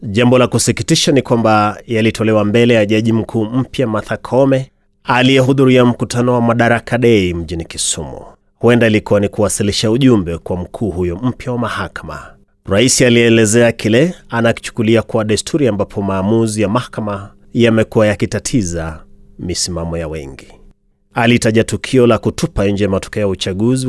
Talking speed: 135 wpm